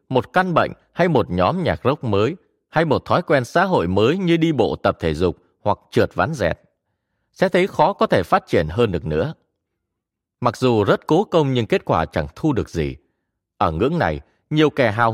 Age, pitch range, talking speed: 20-39, 100-165 Hz, 215 wpm